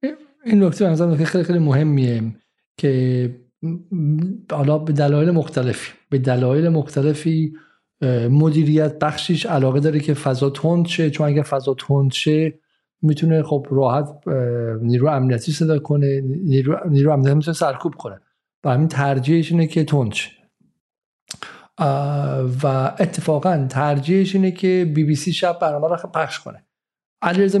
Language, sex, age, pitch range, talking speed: Persian, male, 50-69, 140-170 Hz, 120 wpm